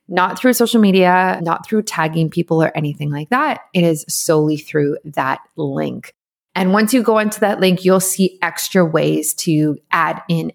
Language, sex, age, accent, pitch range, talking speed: English, female, 20-39, American, 160-195 Hz, 180 wpm